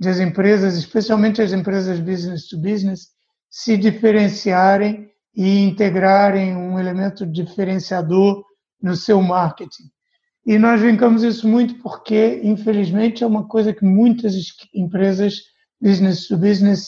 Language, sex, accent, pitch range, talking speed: Portuguese, male, Brazilian, 185-215 Hz, 120 wpm